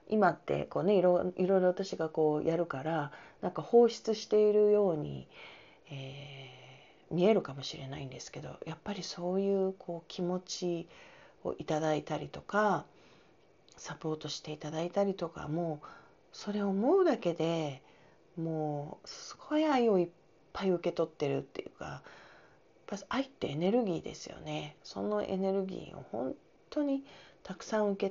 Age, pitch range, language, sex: 40-59, 155-200 Hz, Japanese, female